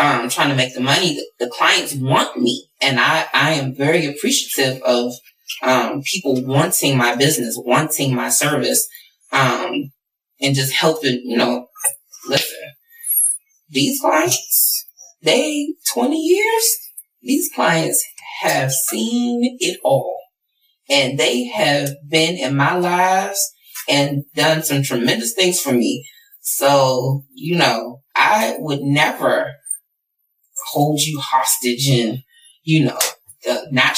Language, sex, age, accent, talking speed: English, female, 20-39, American, 125 wpm